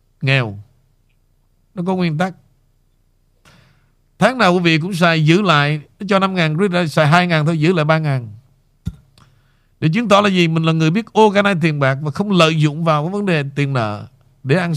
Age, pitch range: 50-69, 130-180 Hz